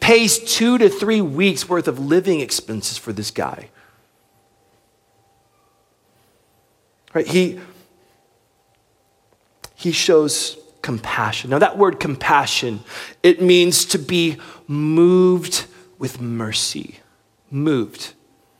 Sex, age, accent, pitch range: male, 40-59, American, 130-195 Hz